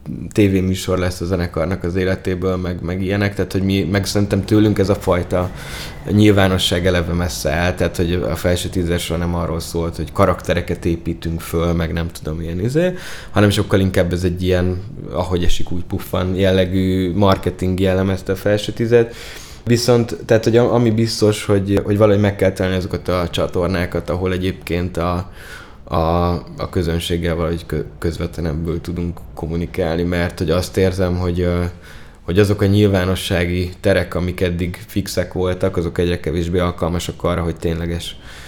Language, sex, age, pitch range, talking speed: Hungarian, male, 20-39, 85-95 Hz, 155 wpm